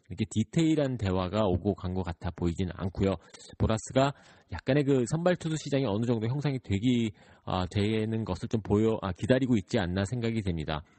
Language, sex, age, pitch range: Korean, male, 40-59, 100-150 Hz